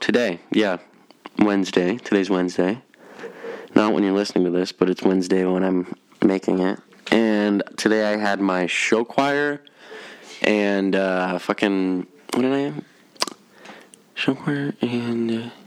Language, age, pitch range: English, 20-39, 95-130 Hz